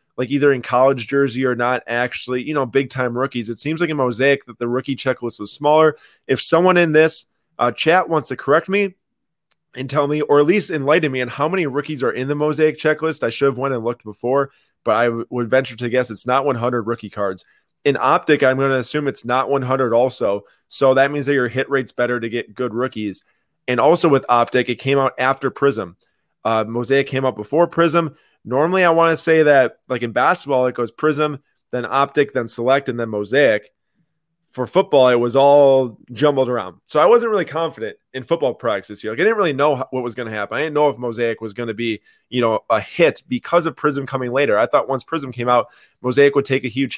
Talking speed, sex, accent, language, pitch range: 230 wpm, male, American, English, 120-150 Hz